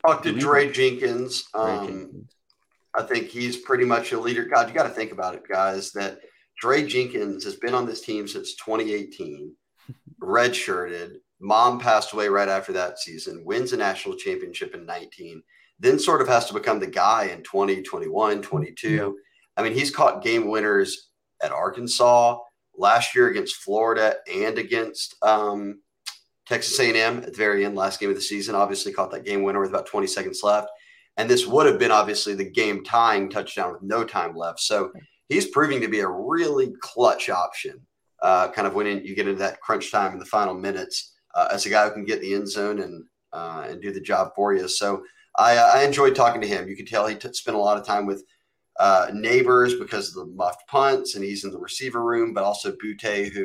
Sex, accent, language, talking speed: male, American, English, 205 wpm